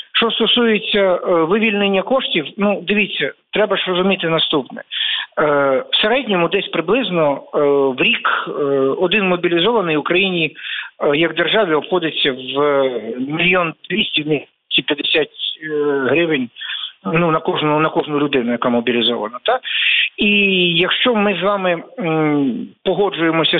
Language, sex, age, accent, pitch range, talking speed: Ukrainian, male, 50-69, native, 155-195 Hz, 105 wpm